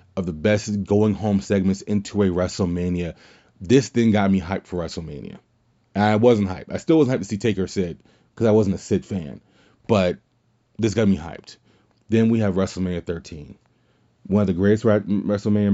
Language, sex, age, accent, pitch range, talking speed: English, male, 20-39, American, 95-115 Hz, 185 wpm